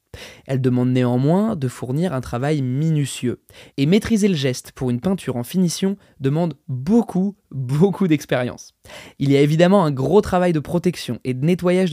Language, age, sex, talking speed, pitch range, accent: French, 20-39, male, 165 wpm, 130-175 Hz, French